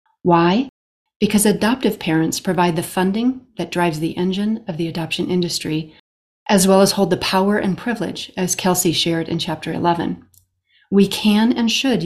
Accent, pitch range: American, 165-200 Hz